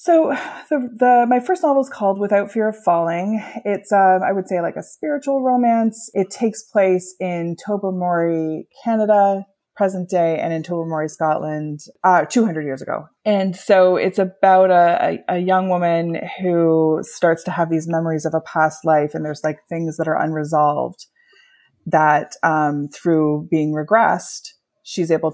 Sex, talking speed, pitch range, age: female, 165 wpm, 155-205 Hz, 20-39